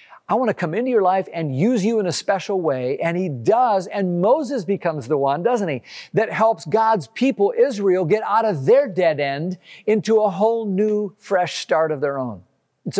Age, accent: 50-69, American